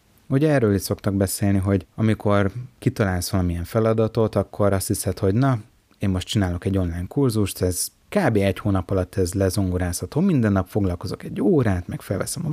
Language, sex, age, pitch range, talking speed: Hungarian, male, 30-49, 90-115 Hz, 165 wpm